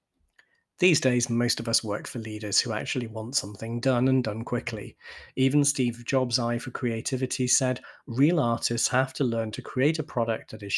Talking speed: 190 wpm